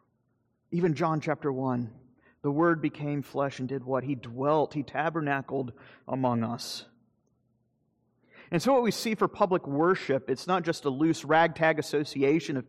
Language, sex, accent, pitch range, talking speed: English, male, American, 130-165 Hz, 155 wpm